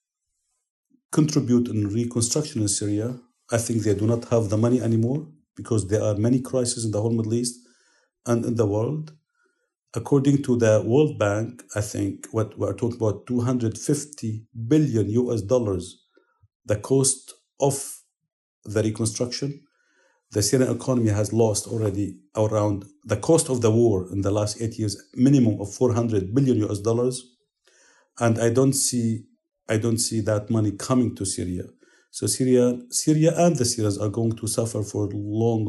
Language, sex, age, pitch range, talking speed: English, male, 50-69, 110-135 Hz, 160 wpm